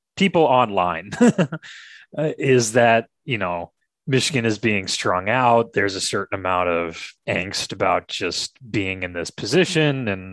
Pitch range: 90-125 Hz